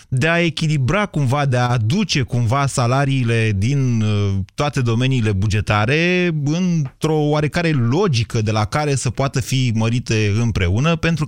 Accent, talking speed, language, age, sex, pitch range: native, 135 wpm, Romanian, 30-49, male, 110-165 Hz